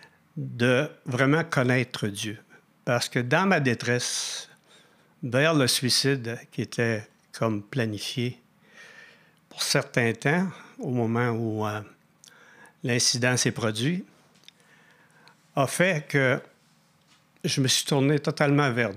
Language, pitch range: French, 125-155 Hz